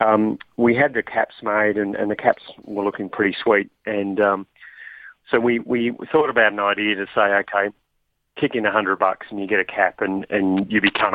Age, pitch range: 40-59, 95-110 Hz